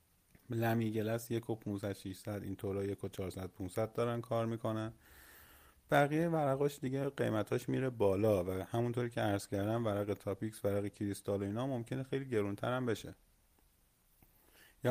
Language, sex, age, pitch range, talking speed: Persian, male, 30-49, 100-125 Hz, 125 wpm